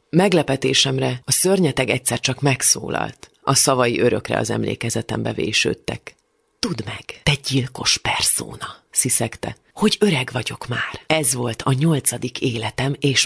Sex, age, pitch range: female, 30-49, 115-145 Hz